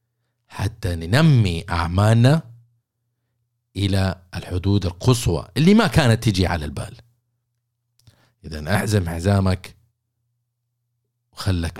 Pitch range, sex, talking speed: 95-120 Hz, male, 80 wpm